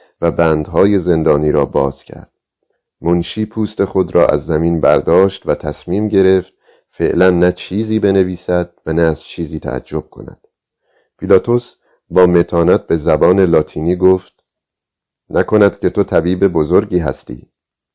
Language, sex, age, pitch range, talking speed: Persian, male, 40-59, 80-95 Hz, 130 wpm